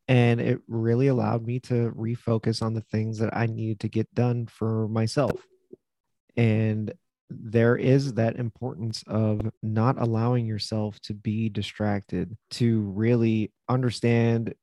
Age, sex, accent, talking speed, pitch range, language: 30-49, male, American, 135 wpm, 110-125 Hz, English